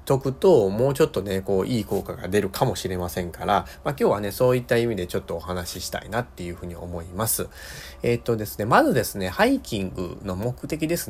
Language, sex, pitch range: Japanese, male, 90-130 Hz